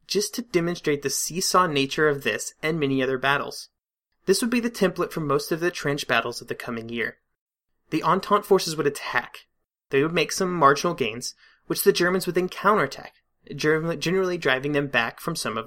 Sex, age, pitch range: male, 30-49, 140-180 Hz